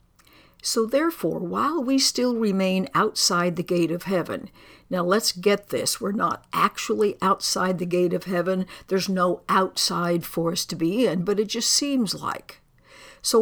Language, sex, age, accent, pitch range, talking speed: English, female, 60-79, American, 180-225 Hz, 165 wpm